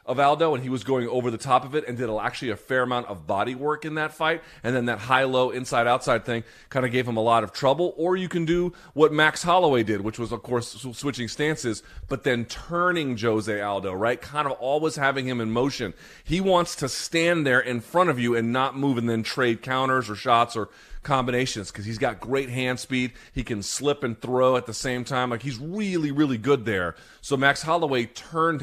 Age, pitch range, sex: 30-49, 115-145 Hz, male